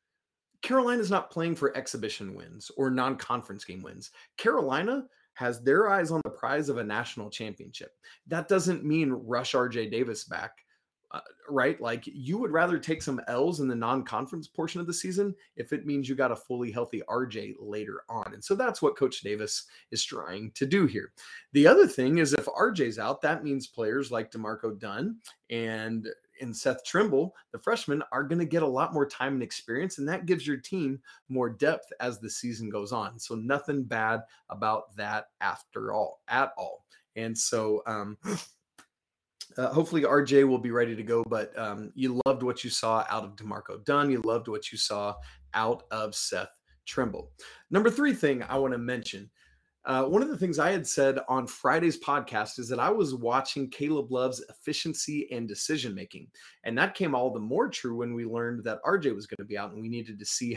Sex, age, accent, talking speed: male, 30-49, American, 195 wpm